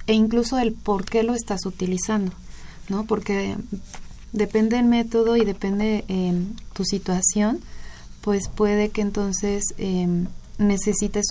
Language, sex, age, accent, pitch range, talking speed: Spanish, female, 30-49, Mexican, 180-210 Hz, 135 wpm